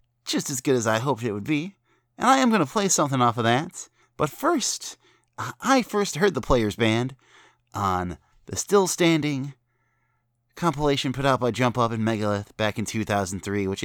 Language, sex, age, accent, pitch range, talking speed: English, male, 30-49, American, 90-125 Hz, 180 wpm